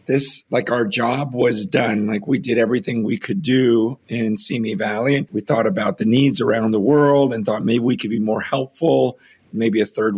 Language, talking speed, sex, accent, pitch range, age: English, 205 wpm, male, American, 115-140 Hz, 50-69